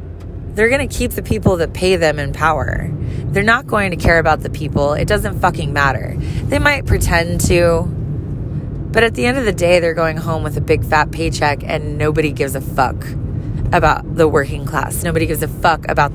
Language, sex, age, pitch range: English, female, 20-39, 120-165 Hz